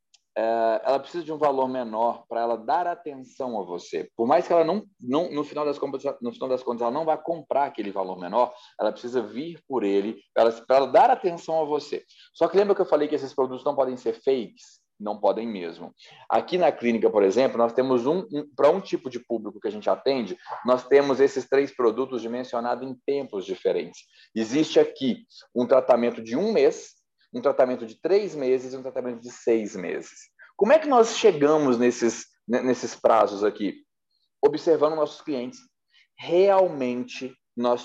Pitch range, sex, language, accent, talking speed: 120-170 Hz, male, Portuguese, Brazilian, 190 wpm